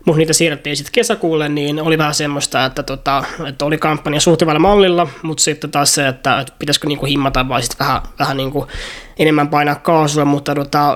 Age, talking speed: 20-39, 180 wpm